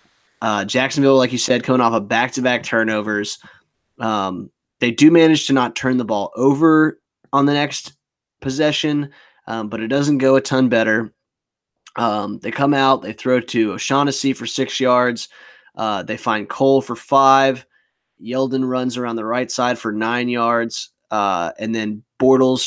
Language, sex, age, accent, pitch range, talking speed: English, male, 20-39, American, 115-135 Hz, 165 wpm